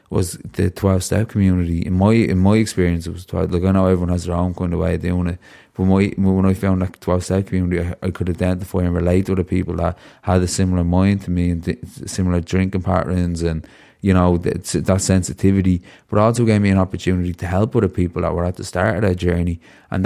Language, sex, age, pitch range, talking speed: English, male, 20-39, 90-100 Hz, 245 wpm